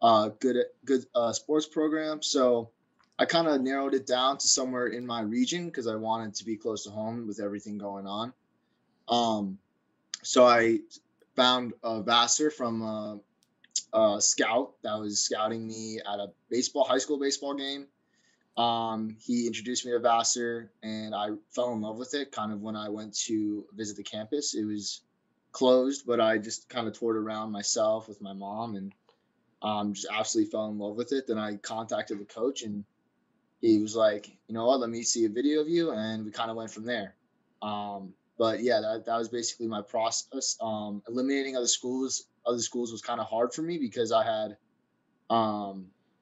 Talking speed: 190 wpm